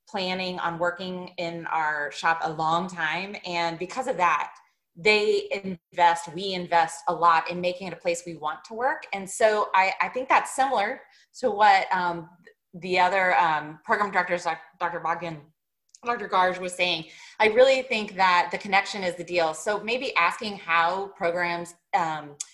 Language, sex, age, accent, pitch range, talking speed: English, female, 20-39, American, 170-215 Hz, 170 wpm